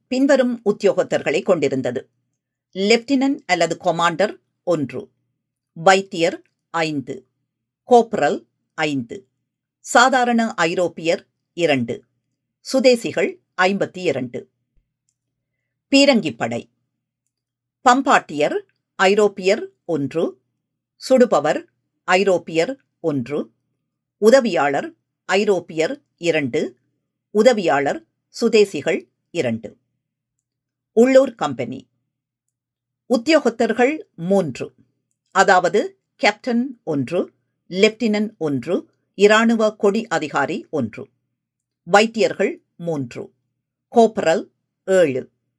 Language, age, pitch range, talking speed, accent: Tamil, 50-69, 135-220 Hz, 60 wpm, native